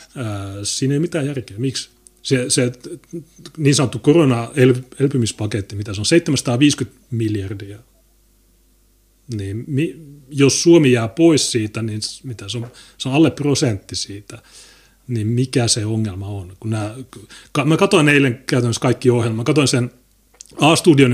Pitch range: 110-135 Hz